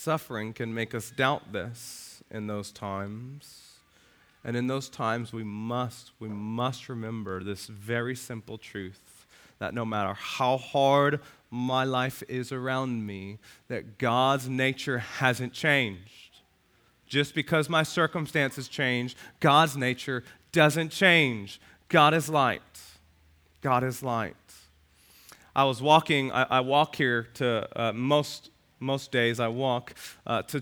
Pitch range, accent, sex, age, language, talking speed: 120-160 Hz, American, male, 30-49, English, 135 wpm